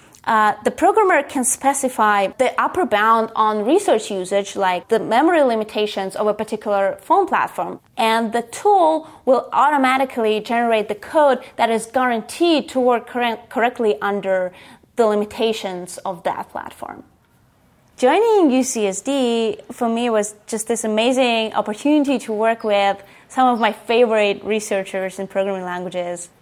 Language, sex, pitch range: English, female, 200-250 Hz